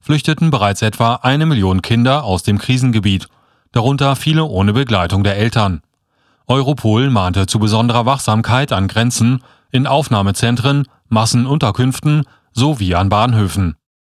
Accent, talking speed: German, 120 wpm